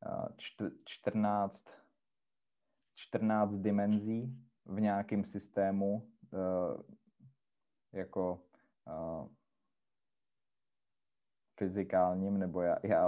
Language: Czech